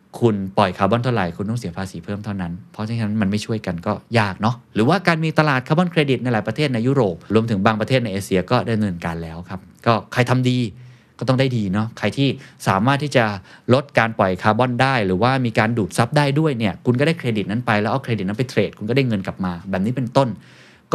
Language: Thai